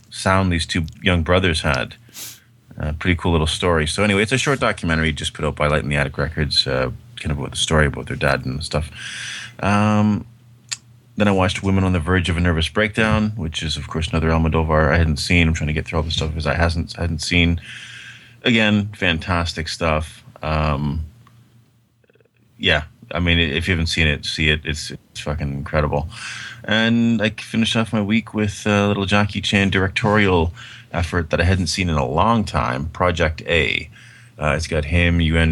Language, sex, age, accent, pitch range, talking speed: English, male, 30-49, American, 80-105 Hz, 200 wpm